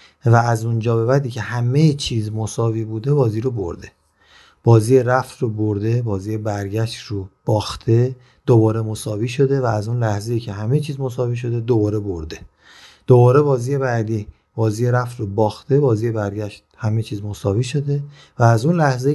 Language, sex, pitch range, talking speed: Persian, male, 110-140 Hz, 165 wpm